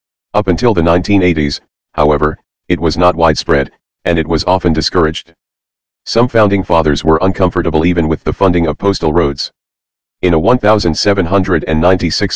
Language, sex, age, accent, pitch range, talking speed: English, male, 40-59, American, 80-95 Hz, 140 wpm